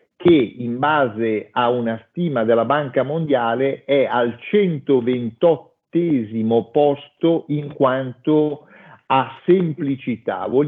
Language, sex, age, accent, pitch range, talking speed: Italian, male, 50-69, native, 125-165 Hz, 100 wpm